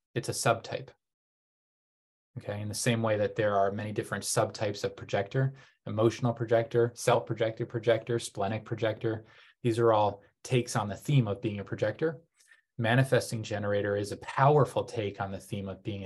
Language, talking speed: English, 165 wpm